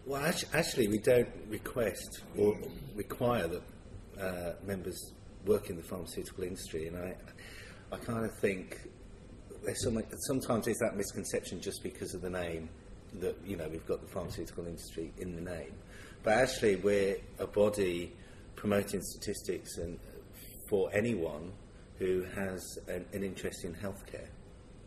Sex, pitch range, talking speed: male, 85-105 Hz, 150 wpm